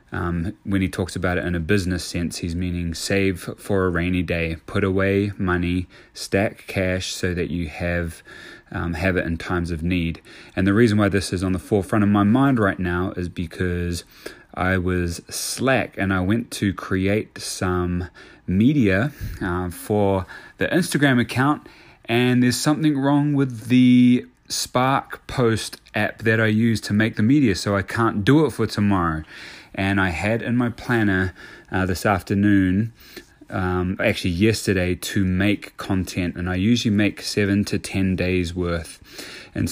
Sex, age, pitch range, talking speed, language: male, 20-39, 90-105 Hz, 170 wpm, English